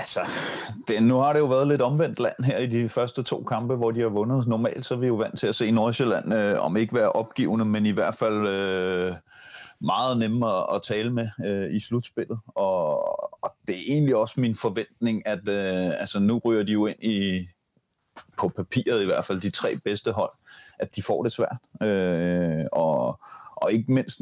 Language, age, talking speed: Danish, 30-49, 210 wpm